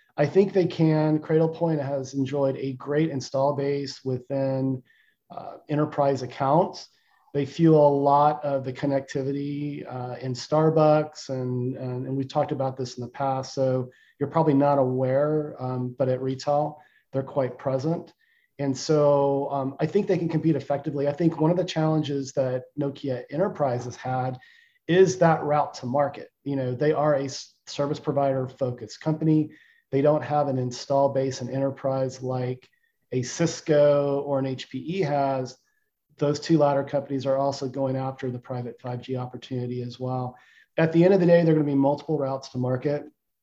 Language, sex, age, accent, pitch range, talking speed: English, male, 40-59, American, 130-150 Hz, 170 wpm